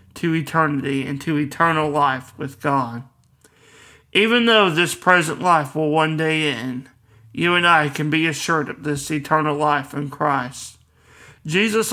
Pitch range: 140-165 Hz